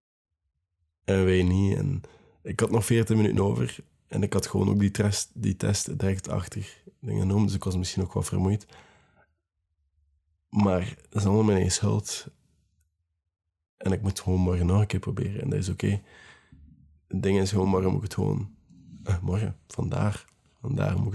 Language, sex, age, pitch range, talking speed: Dutch, male, 20-39, 85-105 Hz, 175 wpm